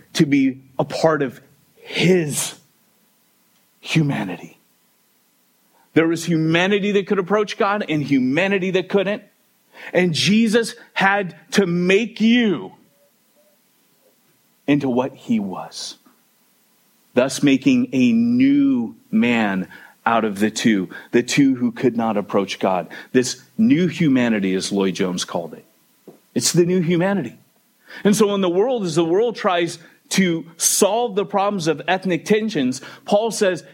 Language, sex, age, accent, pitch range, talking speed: English, male, 40-59, American, 160-220 Hz, 130 wpm